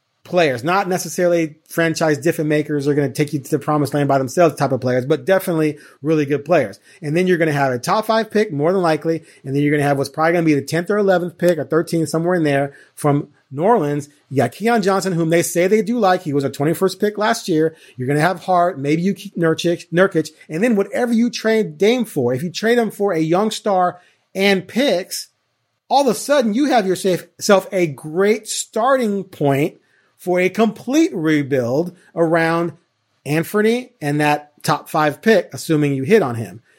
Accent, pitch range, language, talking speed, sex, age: American, 150-190 Hz, English, 215 wpm, male, 30-49